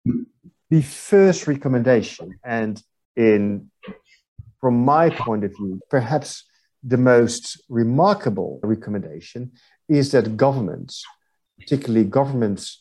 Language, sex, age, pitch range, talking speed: English, male, 50-69, 105-145 Hz, 95 wpm